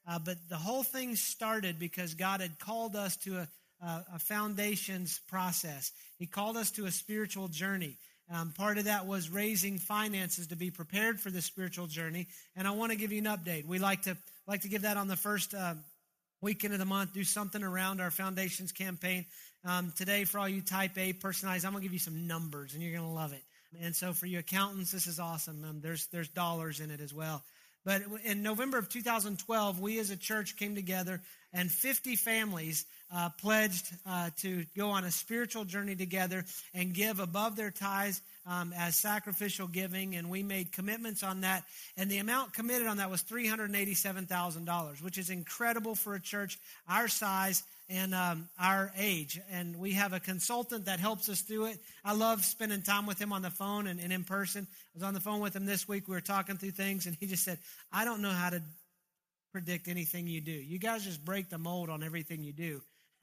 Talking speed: 215 wpm